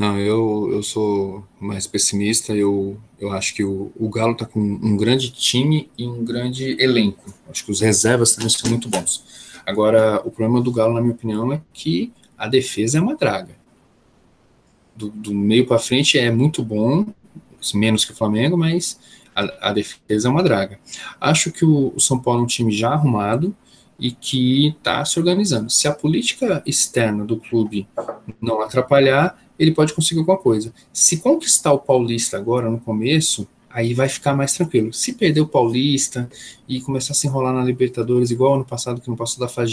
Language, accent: Portuguese, Brazilian